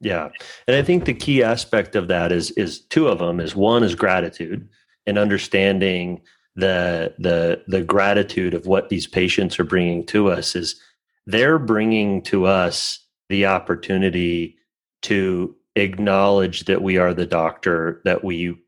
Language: English